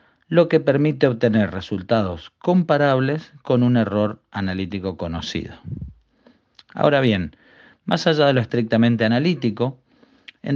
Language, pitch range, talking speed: Spanish, 105-135 Hz, 115 wpm